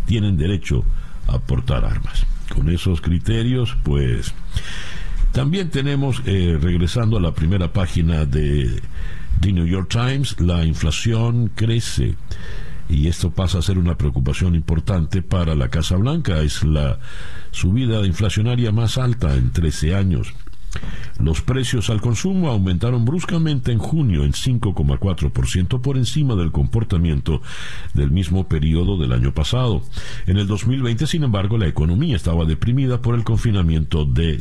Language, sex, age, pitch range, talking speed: Spanish, male, 60-79, 75-115 Hz, 140 wpm